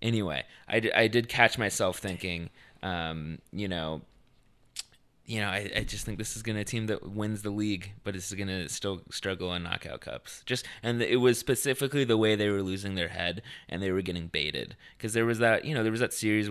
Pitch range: 90-110 Hz